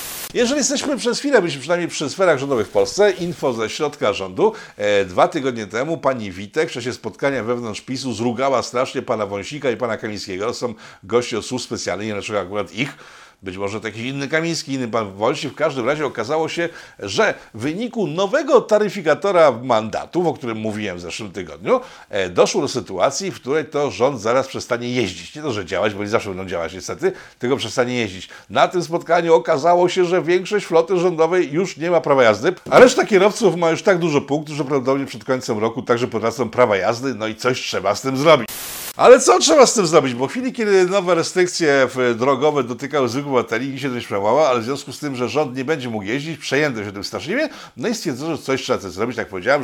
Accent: native